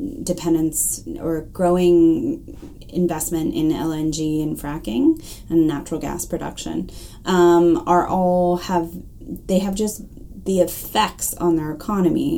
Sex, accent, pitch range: female, American, 155-185 Hz